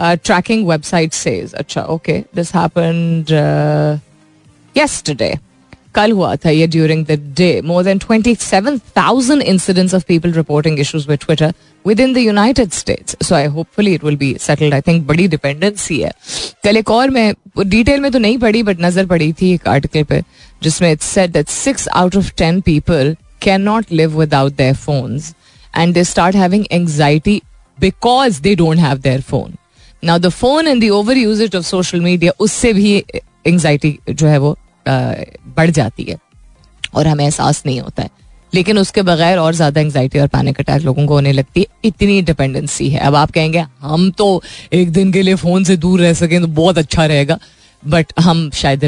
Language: Hindi